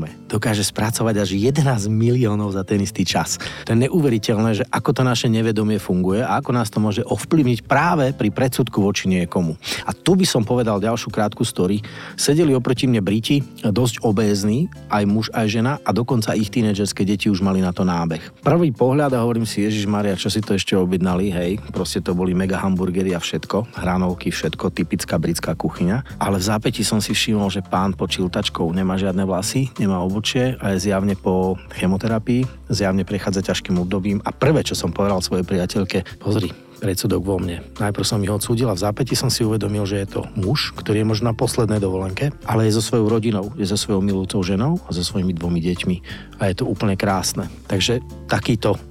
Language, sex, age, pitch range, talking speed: Slovak, male, 40-59, 95-120 Hz, 195 wpm